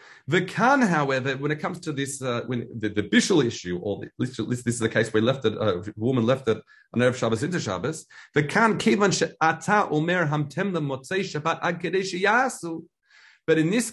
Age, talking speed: 40-59, 165 wpm